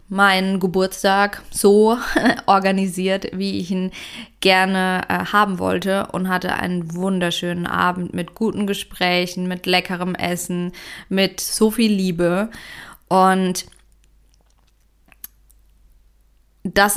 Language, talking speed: German, 100 wpm